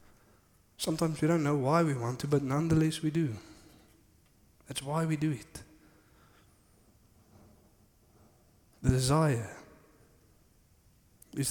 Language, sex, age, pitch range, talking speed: English, male, 20-39, 115-155 Hz, 105 wpm